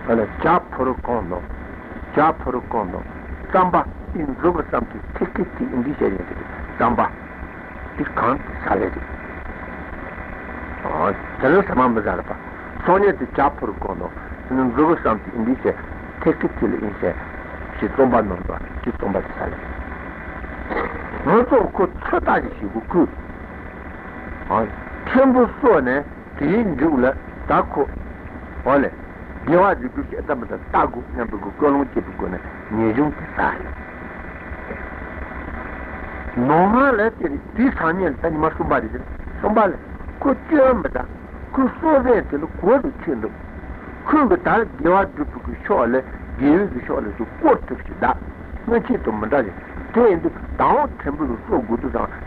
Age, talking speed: 60-79, 50 wpm